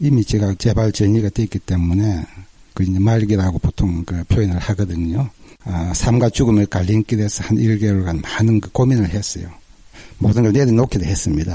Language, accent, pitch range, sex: Korean, native, 95-115 Hz, male